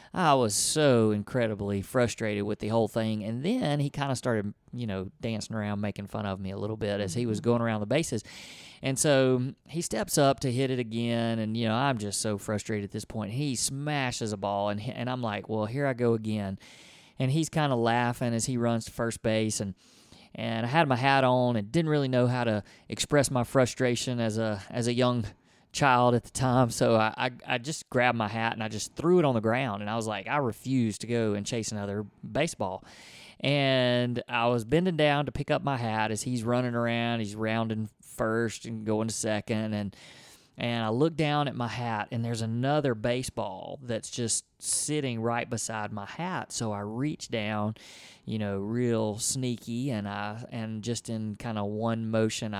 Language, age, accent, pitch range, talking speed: English, 30-49, American, 110-125 Hz, 210 wpm